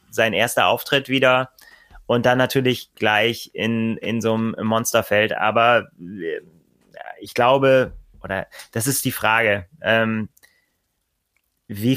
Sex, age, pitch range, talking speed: male, 20-39, 105-125 Hz, 115 wpm